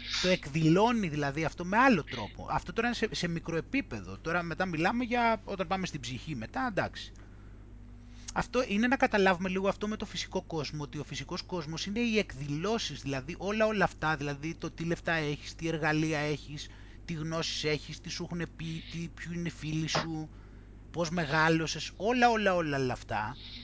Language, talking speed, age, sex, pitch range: Greek, 180 wpm, 30-49, male, 140-210 Hz